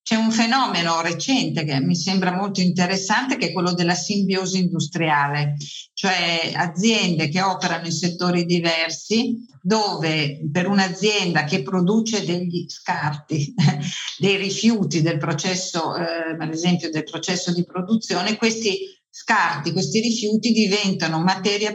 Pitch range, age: 165-195 Hz, 50-69